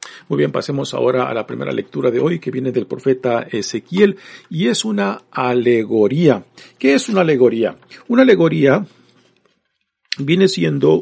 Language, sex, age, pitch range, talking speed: Spanish, male, 50-69, 120-155 Hz, 145 wpm